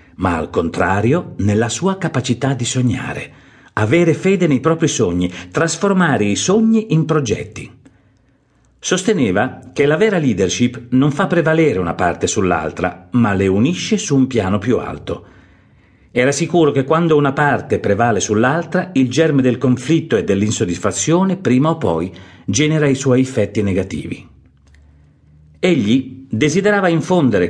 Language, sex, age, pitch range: Italian, male, 50-69, 110-160 Hz